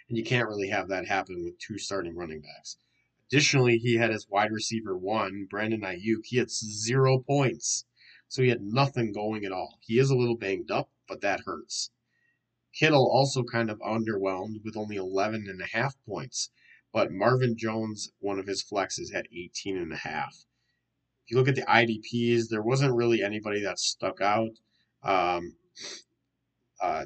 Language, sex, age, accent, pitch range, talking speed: English, male, 30-49, American, 105-125 Hz, 175 wpm